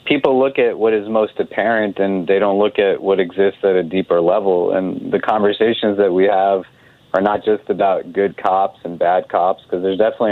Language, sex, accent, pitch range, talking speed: English, male, American, 90-105 Hz, 210 wpm